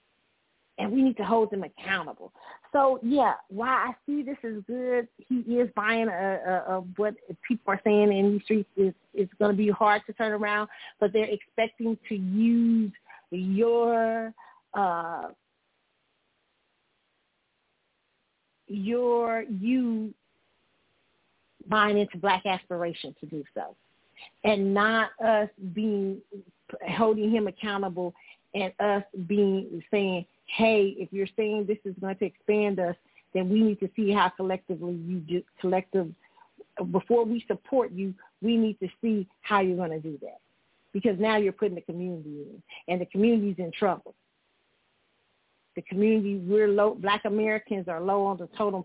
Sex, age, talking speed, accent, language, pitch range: female, 40-59, 150 wpm, American, English, 185-220 Hz